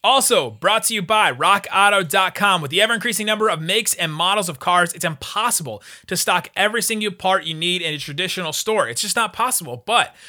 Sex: male